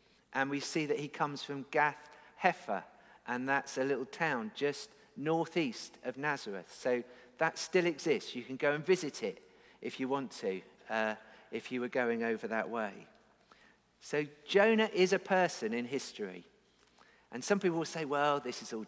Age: 50-69